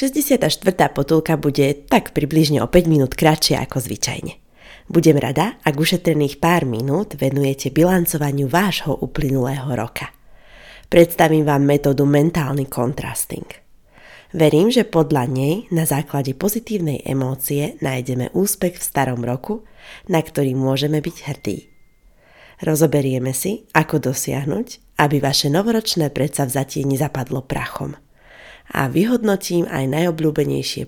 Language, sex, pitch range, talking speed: Slovak, female, 140-175 Hz, 115 wpm